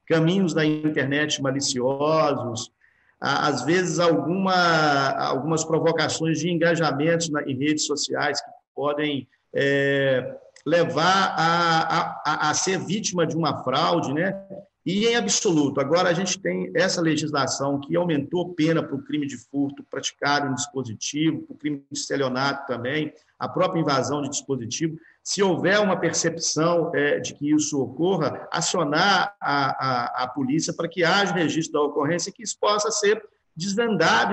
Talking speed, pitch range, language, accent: 145 wpm, 145-190 Hz, Portuguese, Brazilian